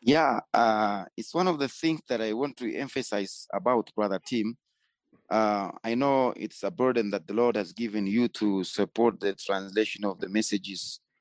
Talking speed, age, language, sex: 180 wpm, 30-49, English, male